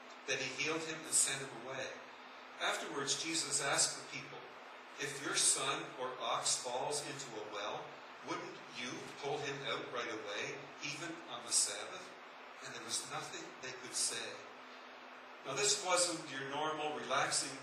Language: English